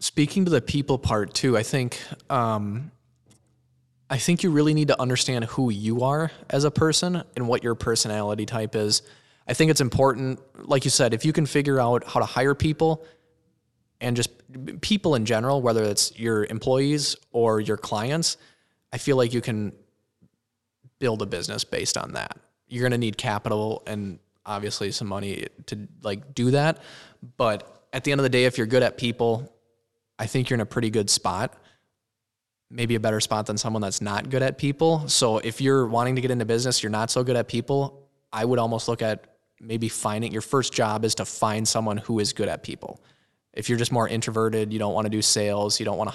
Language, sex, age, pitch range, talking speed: English, male, 20-39, 110-130 Hz, 205 wpm